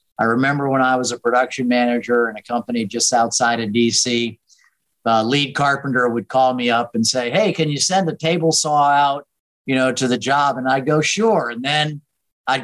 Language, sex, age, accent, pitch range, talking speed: English, male, 50-69, American, 125-150 Hz, 210 wpm